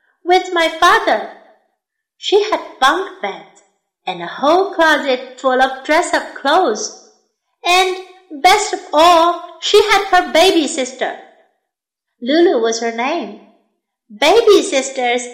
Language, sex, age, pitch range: Chinese, female, 50-69, 265-360 Hz